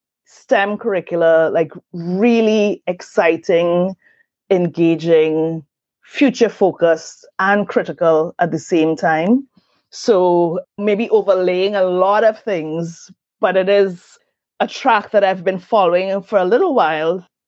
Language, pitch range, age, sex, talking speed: English, 160-200 Hz, 30-49, female, 115 wpm